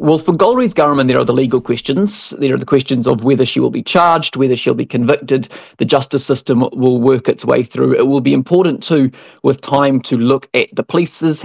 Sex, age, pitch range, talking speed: male, 20-39, 130-150 Hz, 235 wpm